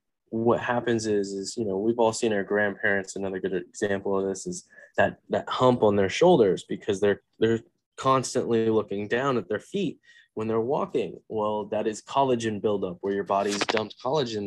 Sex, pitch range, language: male, 100-125 Hz, English